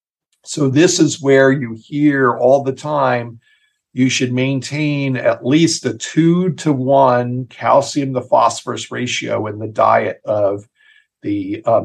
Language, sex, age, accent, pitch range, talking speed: English, male, 50-69, American, 115-140 Hz, 140 wpm